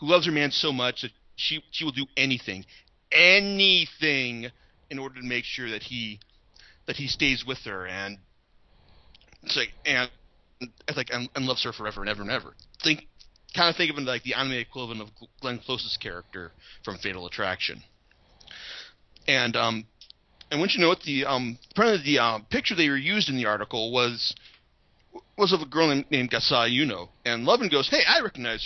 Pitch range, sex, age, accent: 115-155 Hz, male, 30-49, American